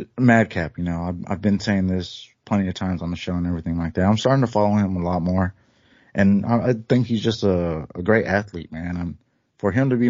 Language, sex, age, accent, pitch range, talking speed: English, male, 30-49, American, 90-110 Hz, 250 wpm